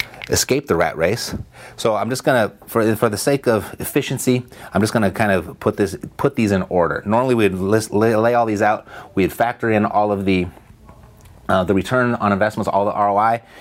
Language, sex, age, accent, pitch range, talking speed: English, male, 30-49, American, 100-130 Hz, 205 wpm